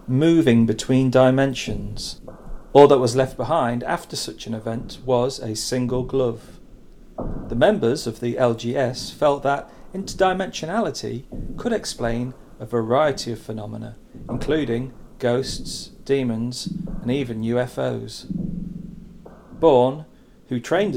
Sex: male